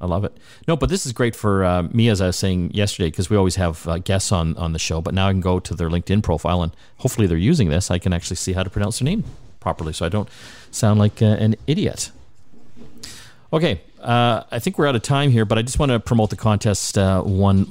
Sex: male